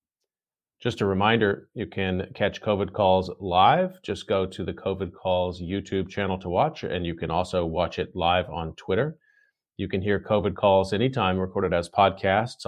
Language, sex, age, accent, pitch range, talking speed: English, male, 40-59, American, 95-110 Hz, 175 wpm